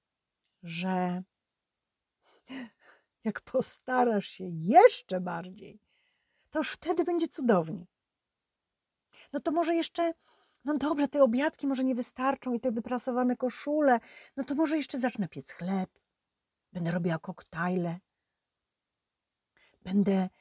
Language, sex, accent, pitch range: Polish, female, native, 200-265 Hz